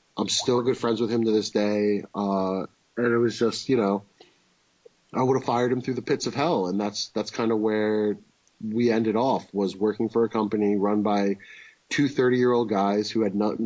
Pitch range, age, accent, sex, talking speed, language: 100-115 Hz, 30-49, American, male, 210 wpm, English